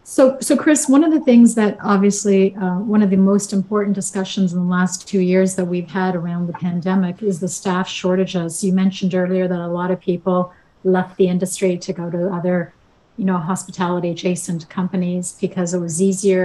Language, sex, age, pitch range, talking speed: English, female, 40-59, 175-195 Hz, 200 wpm